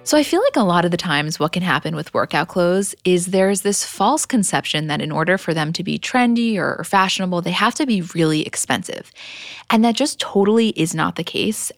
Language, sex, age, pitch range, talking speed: English, female, 20-39, 170-220 Hz, 225 wpm